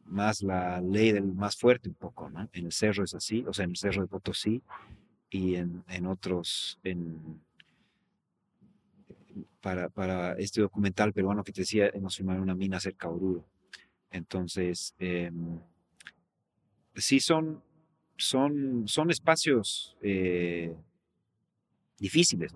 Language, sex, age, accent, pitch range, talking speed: English, male, 40-59, Mexican, 90-110 Hz, 135 wpm